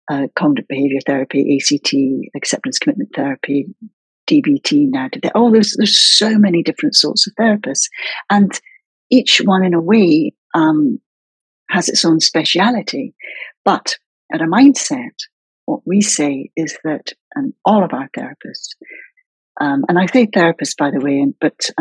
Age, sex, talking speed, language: 60-79, female, 145 wpm, English